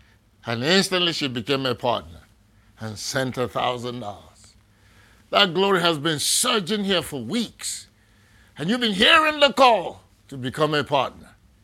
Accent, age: American, 60-79